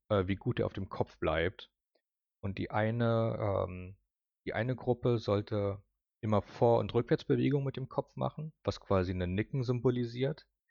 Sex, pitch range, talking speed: male, 95-115 Hz, 155 wpm